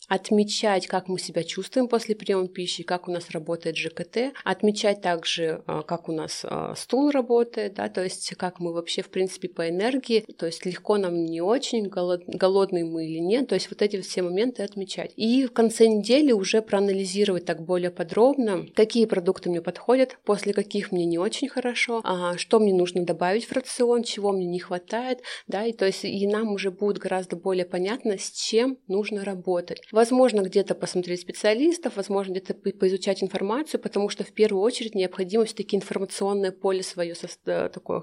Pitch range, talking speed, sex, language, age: 175-215 Hz, 175 wpm, female, Russian, 30-49